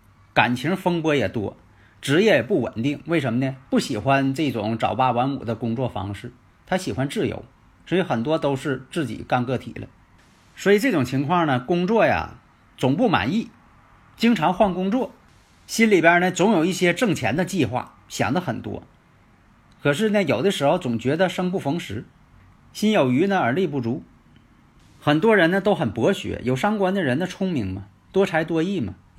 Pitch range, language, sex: 110-165 Hz, Chinese, male